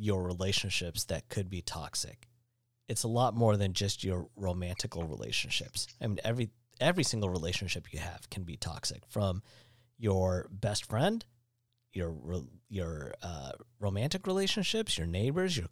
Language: English